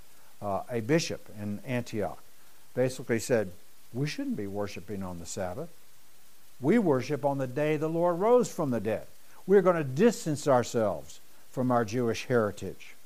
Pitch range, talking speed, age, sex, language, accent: 125-165 Hz, 160 wpm, 60-79, male, English, American